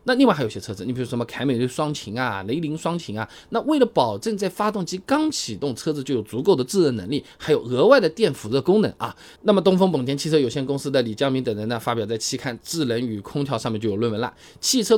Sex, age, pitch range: male, 20-39, 125-200 Hz